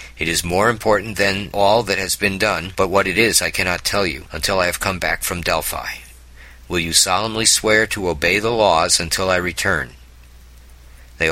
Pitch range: 65-100 Hz